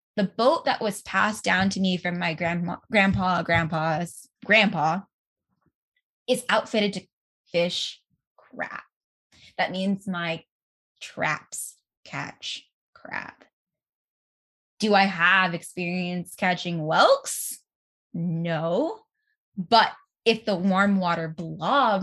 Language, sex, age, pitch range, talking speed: English, female, 10-29, 175-215 Hz, 105 wpm